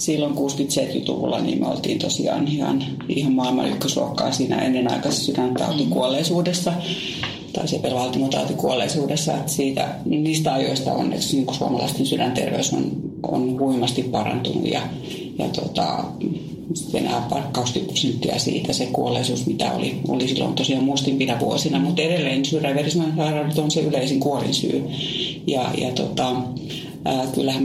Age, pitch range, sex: 30-49, 130-150 Hz, female